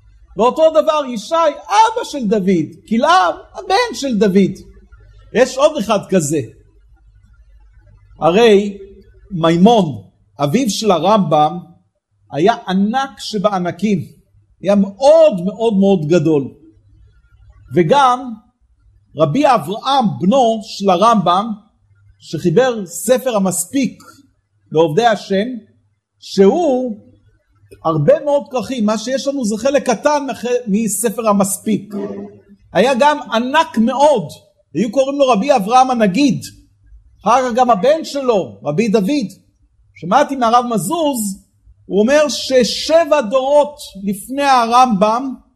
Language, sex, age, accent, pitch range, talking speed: Hebrew, male, 50-69, native, 180-270 Hz, 100 wpm